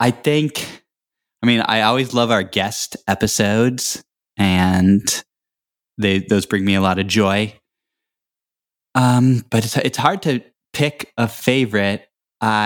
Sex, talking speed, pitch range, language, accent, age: male, 135 wpm, 100-120 Hz, English, American, 20-39